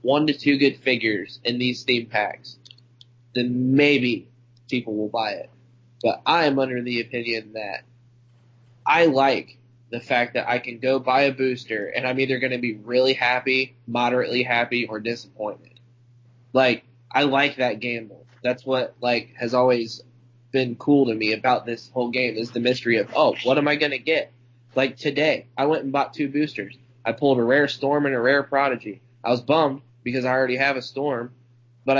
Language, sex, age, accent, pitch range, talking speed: English, male, 20-39, American, 120-130 Hz, 190 wpm